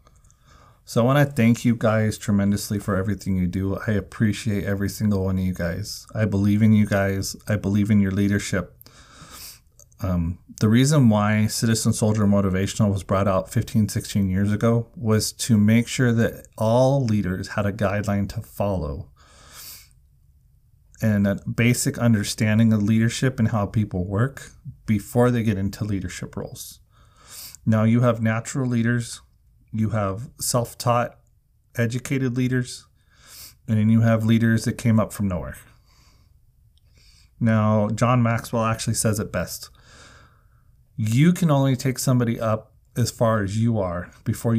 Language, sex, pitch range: English, male, 100-120 Hz